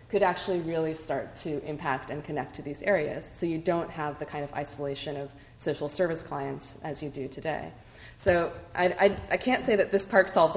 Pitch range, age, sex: 145-175 Hz, 20-39, female